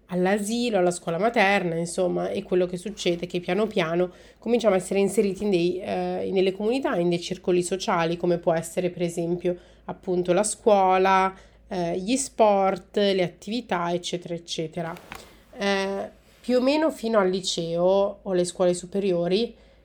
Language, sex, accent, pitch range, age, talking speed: Italian, female, native, 175-205 Hz, 30-49, 150 wpm